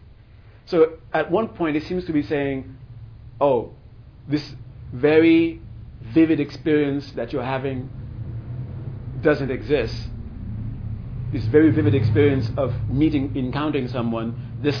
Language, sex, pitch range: English, male, 115-140 Hz